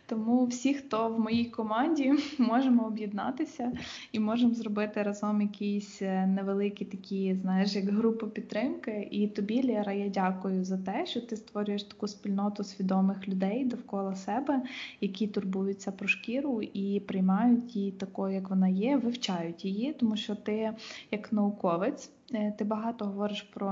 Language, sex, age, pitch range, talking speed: Ukrainian, female, 20-39, 195-230 Hz, 145 wpm